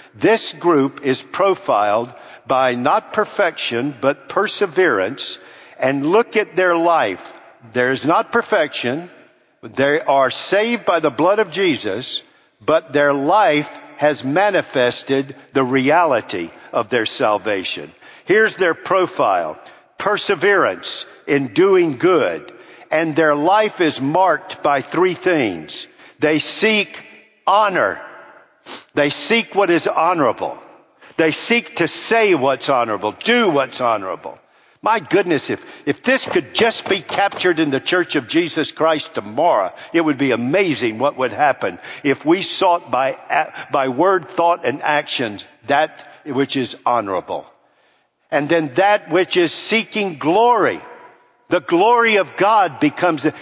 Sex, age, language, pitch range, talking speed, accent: male, 50-69, English, 140-205 Hz, 130 wpm, American